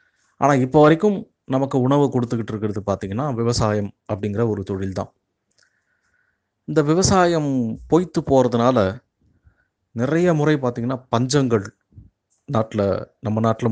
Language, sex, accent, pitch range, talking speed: Tamil, male, native, 105-135 Hz, 100 wpm